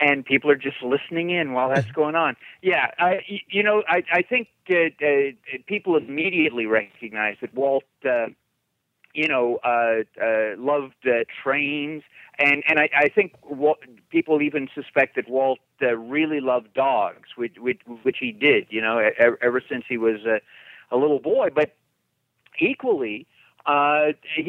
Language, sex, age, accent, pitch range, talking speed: English, male, 50-69, American, 120-155 Hz, 150 wpm